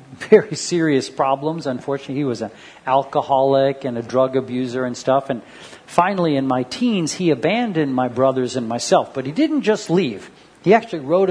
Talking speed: 175 wpm